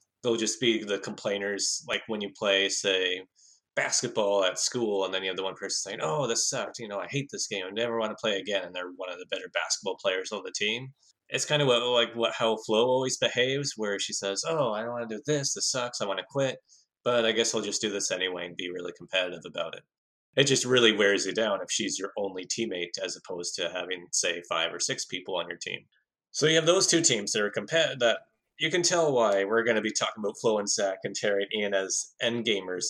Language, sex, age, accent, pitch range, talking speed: English, male, 20-39, American, 100-130 Hz, 255 wpm